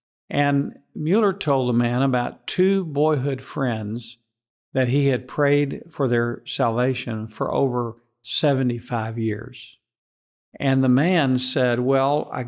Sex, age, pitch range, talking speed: male, 50-69, 120-150 Hz, 125 wpm